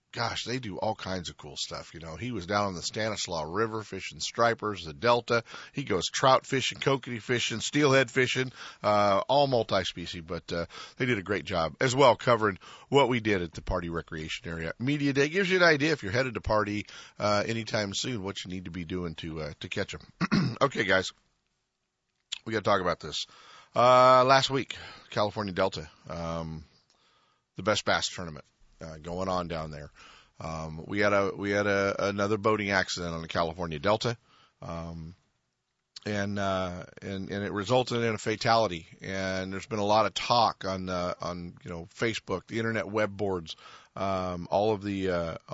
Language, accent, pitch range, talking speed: English, American, 85-110 Hz, 190 wpm